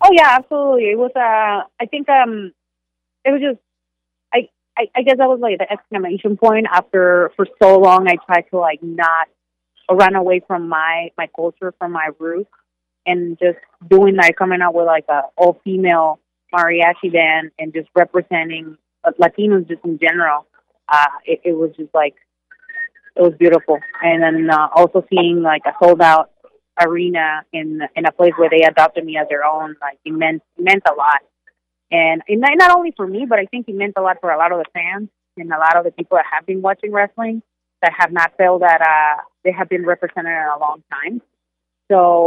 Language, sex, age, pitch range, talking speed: English, female, 30-49, 160-195 Hz, 200 wpm